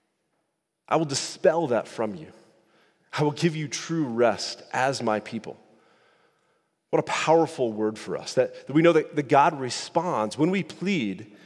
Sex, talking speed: male, 170 wpm